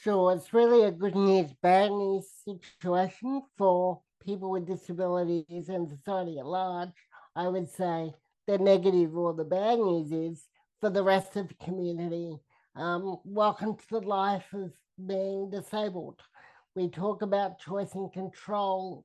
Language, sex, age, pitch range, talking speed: English, male, 50-69, 180-205 Hz, 150 wpm